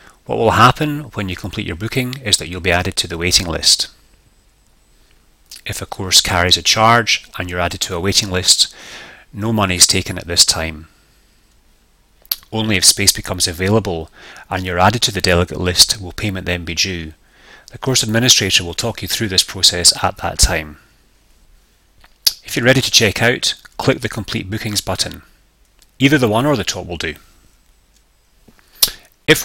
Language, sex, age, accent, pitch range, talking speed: English, male, 30-49, British, 90-110 Hz, 175 wpm